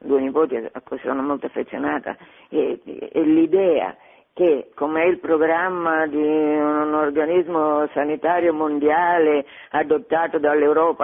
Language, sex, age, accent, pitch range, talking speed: Italian, female, 50-69, native, 150-225 Hz, 120 wpm